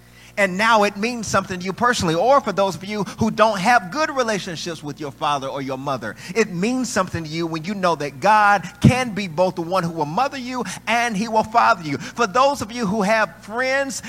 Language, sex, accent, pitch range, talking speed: English, male, American, 160-245 Hz, 235 wpm